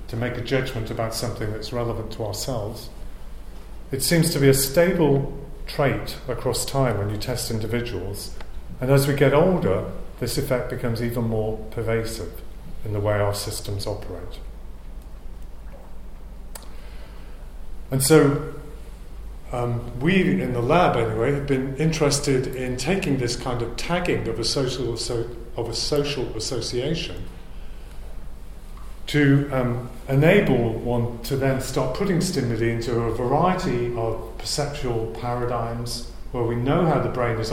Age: 40-59